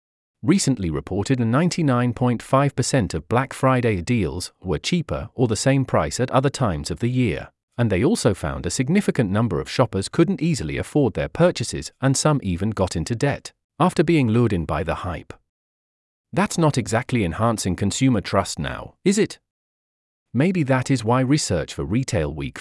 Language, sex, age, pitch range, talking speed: English, male, 40-59, 105-145 Hz, 170 wpm